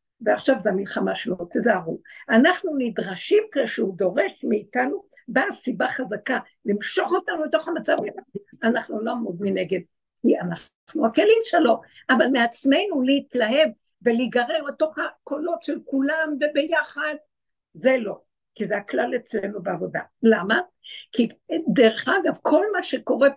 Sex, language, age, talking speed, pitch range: female, Hebrew, 60-79, 125 wpm, 225-315 Hz